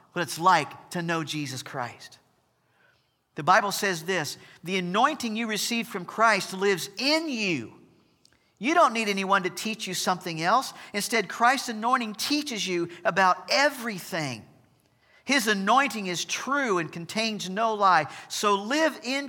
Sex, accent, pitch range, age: male, American, 155-215 Hz, 50-69